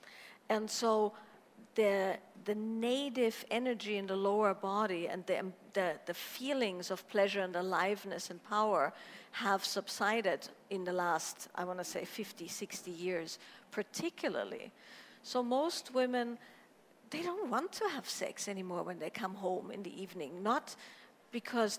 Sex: female